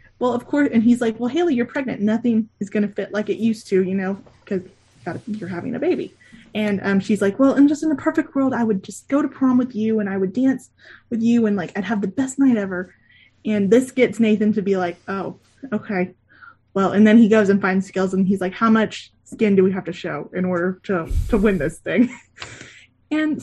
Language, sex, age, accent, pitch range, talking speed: English, female, 20-39, American, 195-245 Hz, 245 wpm